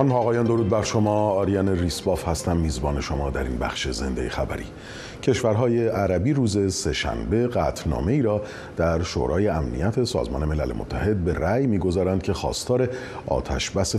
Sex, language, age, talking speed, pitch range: male, Persian, 40-59, 140 wpm, 80-115 Hz